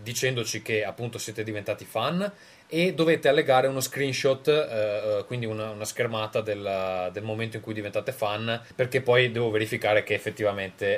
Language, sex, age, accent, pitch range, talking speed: Italian, male, 20-39, native, 105-130 Hz, 160 wpm